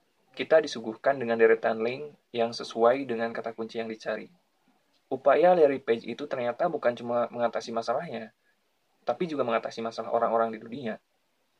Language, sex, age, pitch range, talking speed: Indonesian, male, 20-39, 115-125 Hz, 145 wpm